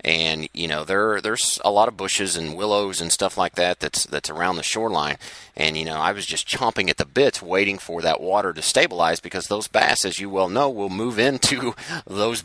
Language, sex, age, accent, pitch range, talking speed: English, male, 30-49, American, 90-120 Hz, 225 wpm